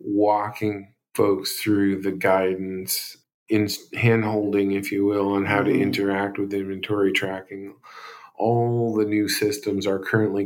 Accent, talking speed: American, 130 wpm